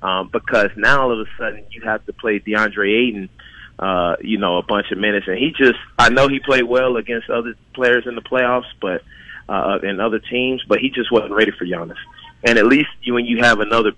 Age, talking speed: 20-39, 230 wpm